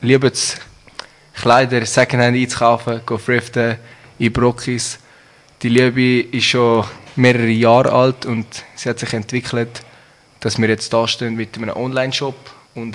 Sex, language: male, German